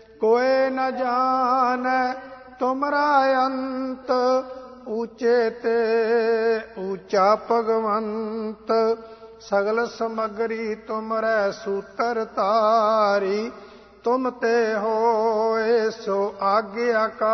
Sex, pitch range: male, 215-245 Hz